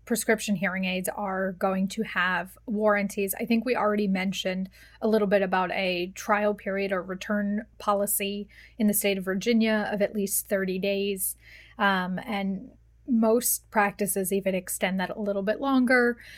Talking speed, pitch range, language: 160 wpm, 195-220 Hz, English